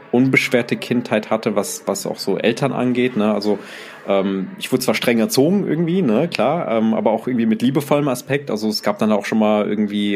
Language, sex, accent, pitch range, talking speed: German, male, German, 105-130 Hz, 205 wpm